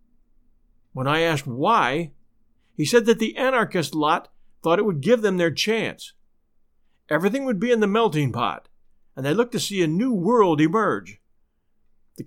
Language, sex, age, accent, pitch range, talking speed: English, male, 50-69, American, 150-230 Hz, 165 wpm